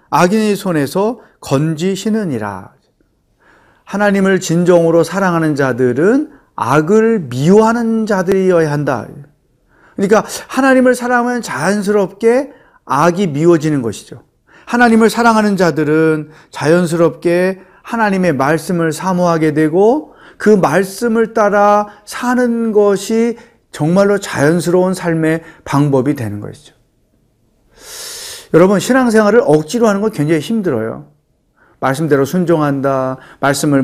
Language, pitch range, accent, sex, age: Korean, 150-215 Hz, native, male, 40-59